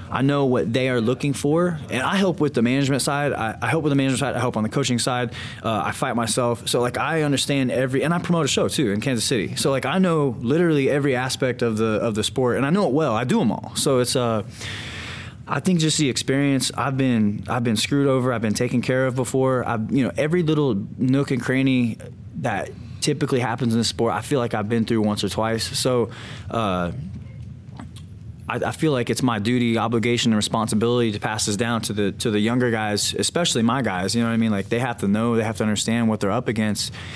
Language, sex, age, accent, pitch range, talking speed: English, male, 20-39, American, 115-135 Hz, 245 wpm